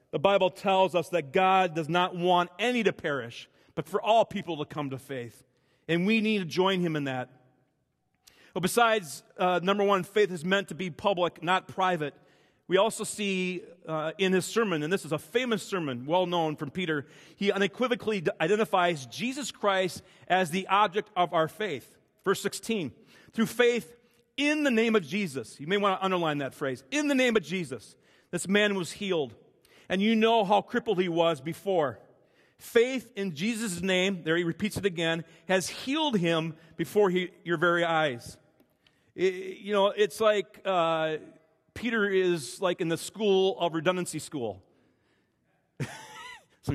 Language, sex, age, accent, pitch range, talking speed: English, male, 40-59, American, 165-210 Hz, 170 wpm